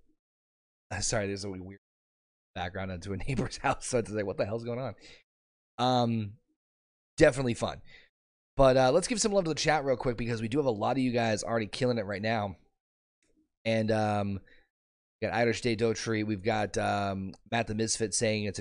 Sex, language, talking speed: male, English, 195 wpm